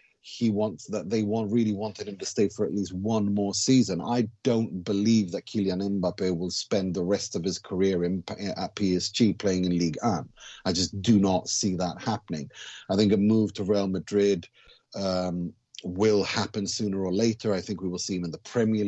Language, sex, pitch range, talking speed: English, male, 95-110 Hz, 205 wpm